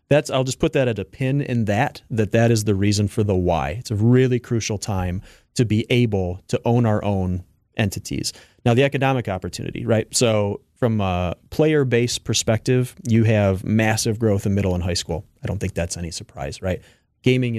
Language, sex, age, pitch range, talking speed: English, male, 30-49, 100-125 Hz, 200 wpm